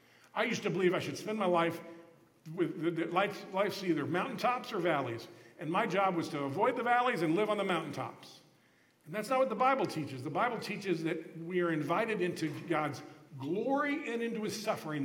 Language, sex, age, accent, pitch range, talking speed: English, male, 50-69, American, 145-180 Hz, 195 wpm